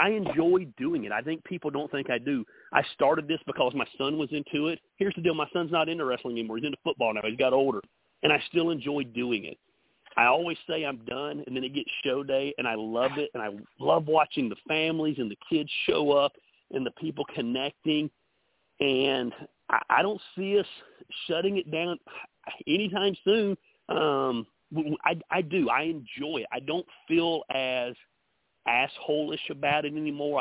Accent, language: American, English